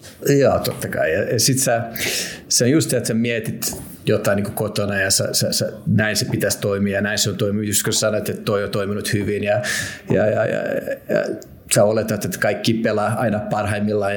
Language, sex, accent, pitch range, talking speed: Finnish, male, native, 105-120 Hz, 200 wpm